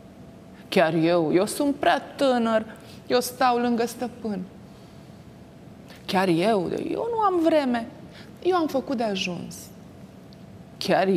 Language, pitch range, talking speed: Romanian, 175-235 Hz, 120 wpm